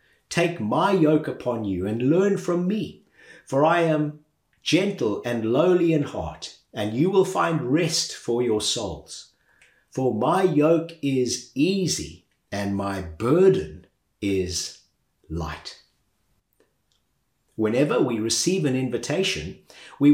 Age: 50-69